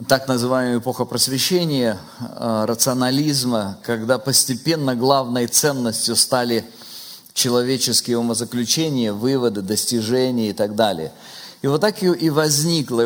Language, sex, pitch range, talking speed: Russian, male, 115-135 Hz, 105 wpm